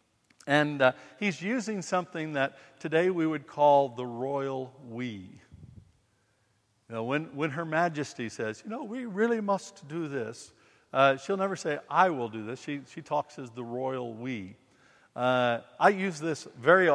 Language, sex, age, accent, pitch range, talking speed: English, male, 50-69, American, 130-180 Hz, 165 wpm